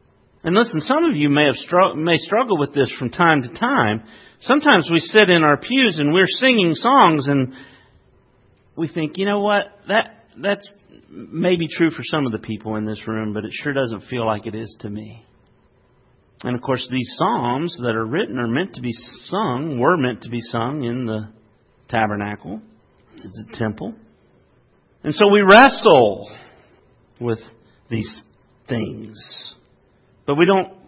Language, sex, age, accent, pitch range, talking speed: English, male, 40-59, American, 115-150 Hz, 170 wpm